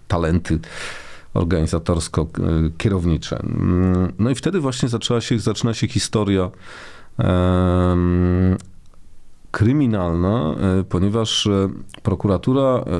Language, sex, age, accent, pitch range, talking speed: Polish, male, 40-59, native, 90-110 Hz, 70 wpm